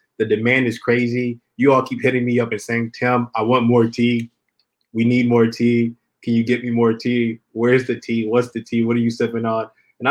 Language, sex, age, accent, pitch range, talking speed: English, male, 20-39, American, 110-125 Hz, 230 wpm